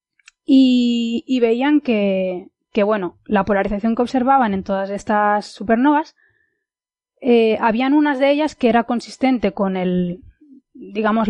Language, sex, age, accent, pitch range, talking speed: Spanish, female, 20-39, Spanish, 205-260 Hz, 135 wpm